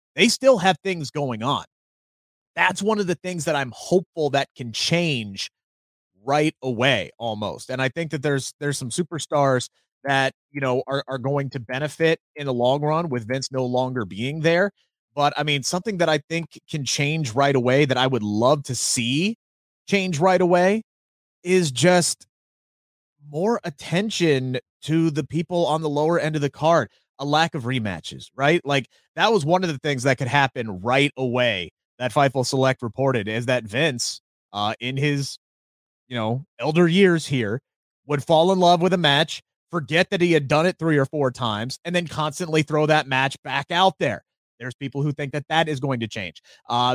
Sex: male